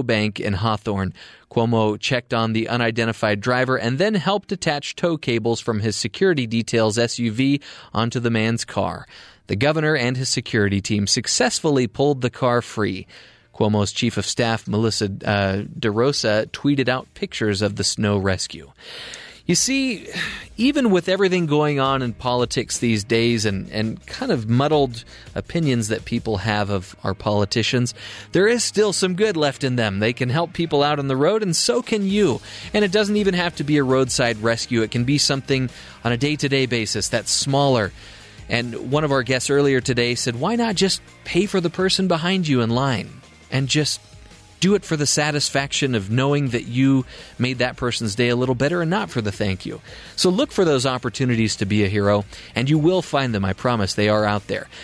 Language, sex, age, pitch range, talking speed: English, male, 30-49, 110-145 Hz, 190 wpm